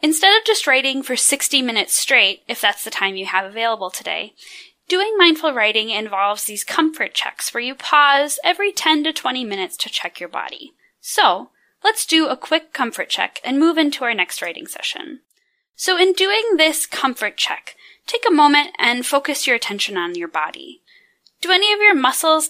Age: 10-29